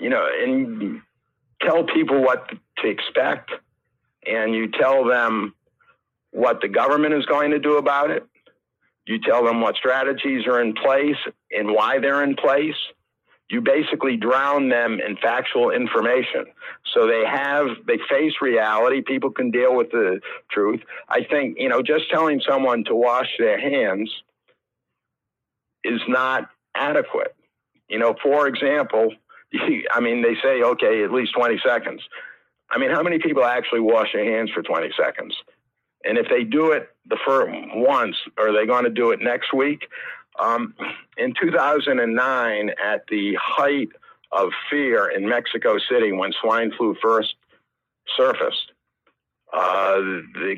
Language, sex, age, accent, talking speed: English, male, 60-79, American, 150 wpm